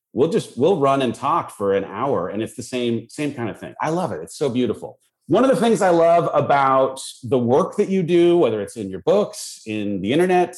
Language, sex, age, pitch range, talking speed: English, male, 30-49, 110-155 Hz, 245 wpm